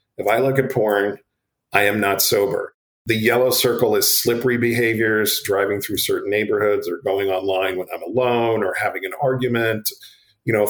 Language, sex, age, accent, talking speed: English, male, 40-59, American, 175 wpm